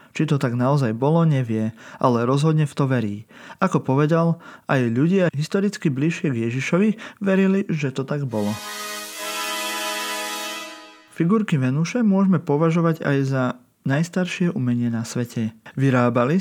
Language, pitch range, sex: Slovak, 130-175 Hz, male